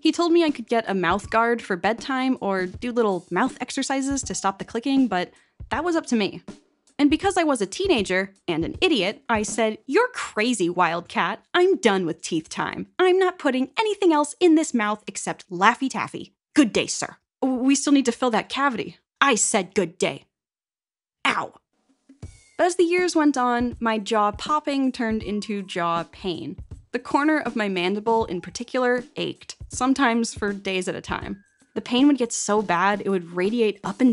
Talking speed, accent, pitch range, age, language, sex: 190 wpm, American, 195-280 Hz, 10-29, English, female